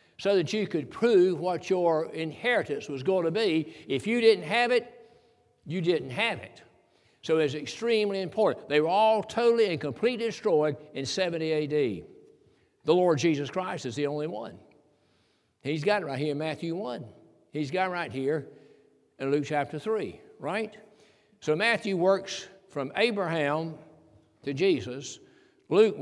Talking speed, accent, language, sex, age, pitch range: 160 wpm, American, English, male, 60-79, 145-195 Hz